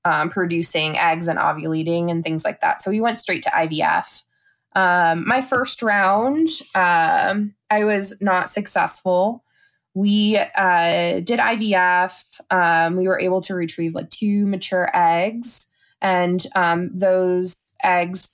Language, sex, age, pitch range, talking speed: English, female, 20-39, 170-205 Hz, 135 wpm